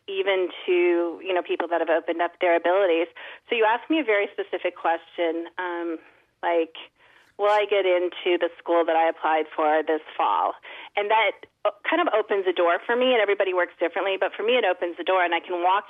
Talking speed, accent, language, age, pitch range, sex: 215 wpm, American, English, 30-49, 175-210 Hz, female